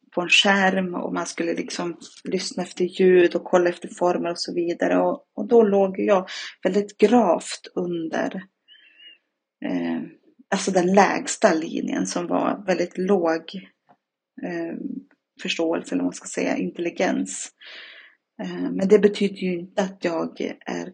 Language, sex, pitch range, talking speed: Swedish, female, 180-225 Hz, 145 wpm